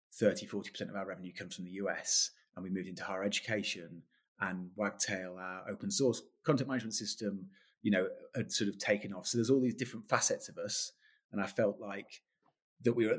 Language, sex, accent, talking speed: English, male, British, 210 wpm